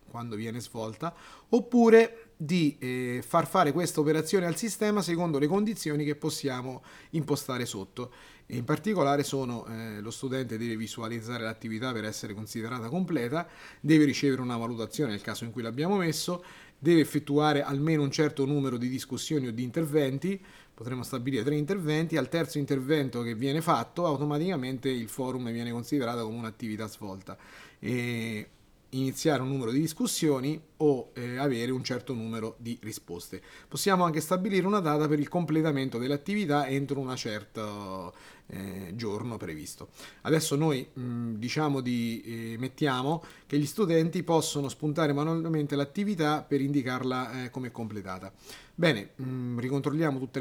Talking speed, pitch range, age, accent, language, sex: 145 wpm, 120-160 Hz, 30-49, native, Italian, male